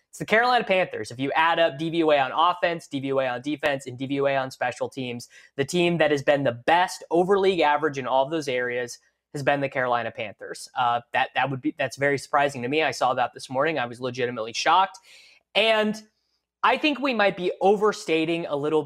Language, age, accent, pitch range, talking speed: English, 20-39, American, 130-165 Hz, 215 wpm